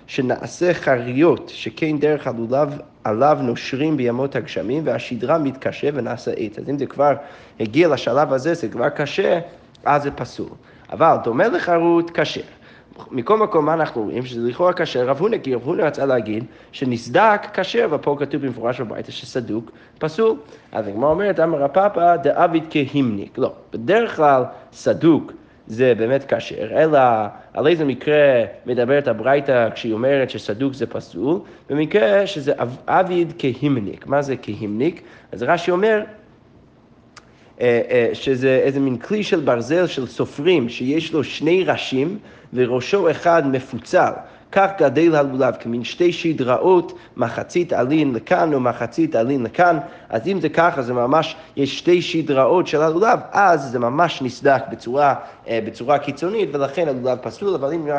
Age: 30-49